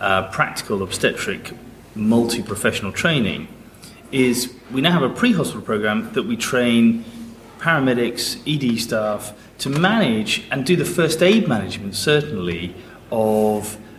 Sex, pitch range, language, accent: male, 105-130 Hz, English, British